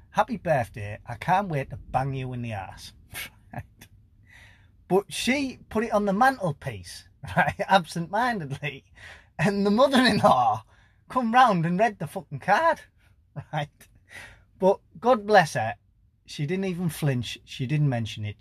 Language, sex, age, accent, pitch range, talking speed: English, male, 30-49, British, 100-170 Hz, 145 wpm